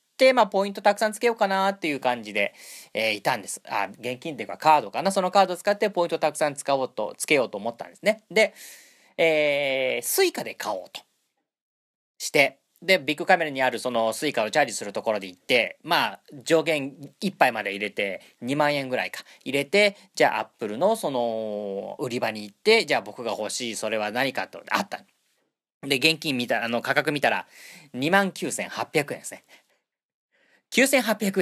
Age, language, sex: 40-59, Japanese, male